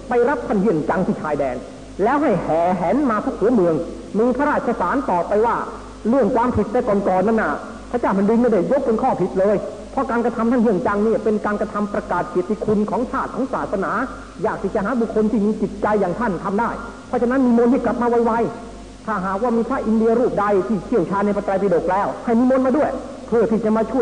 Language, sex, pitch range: Thai, male, 200-245 Hz